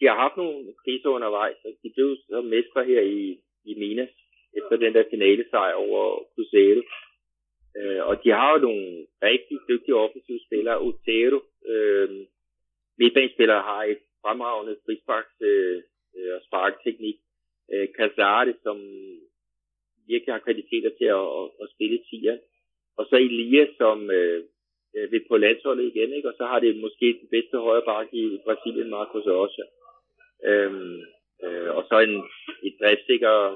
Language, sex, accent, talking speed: Danish, male, native, 145 wpm